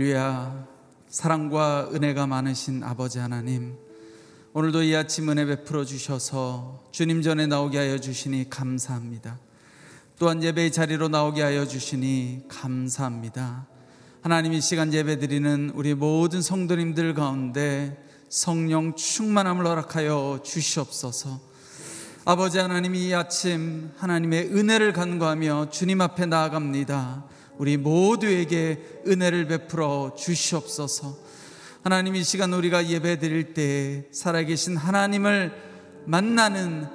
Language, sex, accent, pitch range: Korean, male, native, 145-185 Hz